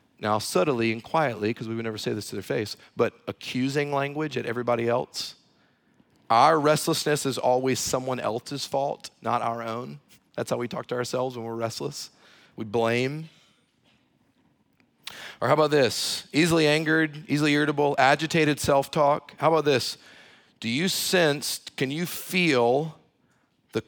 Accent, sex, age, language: American, male, 40-59, English